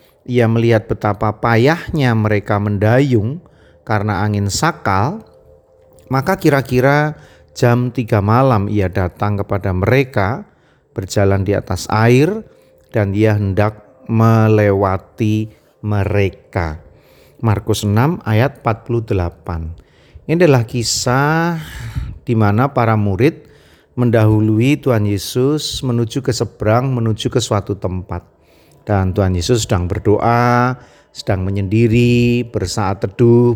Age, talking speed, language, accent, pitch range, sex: 40-59, 100 wpm, Indonesian, native, 100-125 Hz, male